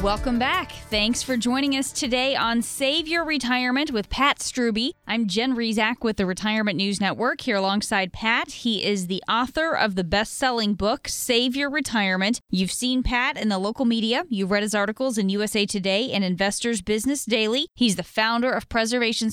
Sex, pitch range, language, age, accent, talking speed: female, 200-245 Hz, English, 20-39, American, 185 wpm